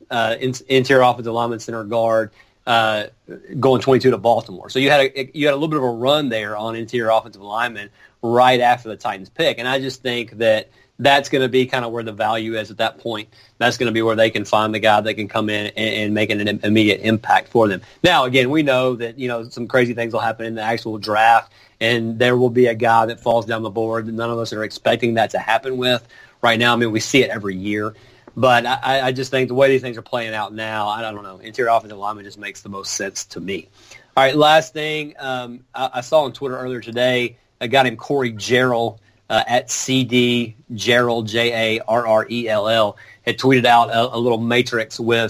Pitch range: 110-130 Hz